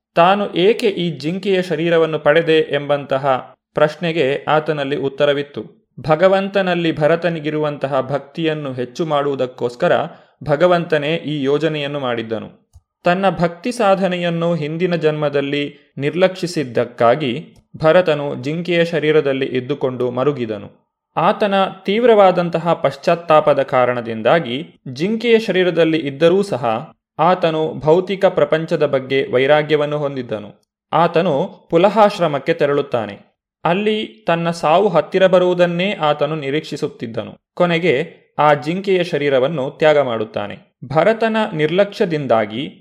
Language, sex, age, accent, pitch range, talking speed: Kannada, male, 30-49, native, 145-175 Hz, 85 wpm